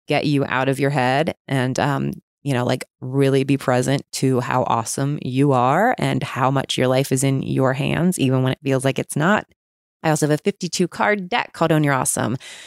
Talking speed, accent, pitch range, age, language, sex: 220 wpm, American, 140-190 Hz, 20-39, English, female